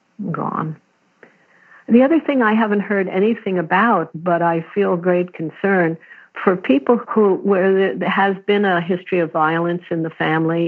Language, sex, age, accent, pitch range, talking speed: English, female, 60-79, American, 155-185 Hz, 155 wpm